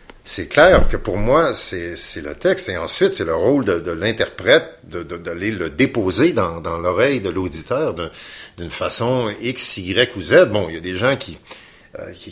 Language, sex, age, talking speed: French, male, 50-69, 215 wpm